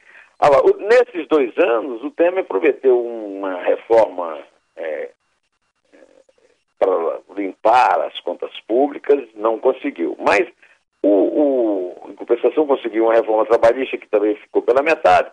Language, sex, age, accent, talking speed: Portuguese, male, 60-79, Brazilian, 105 wpm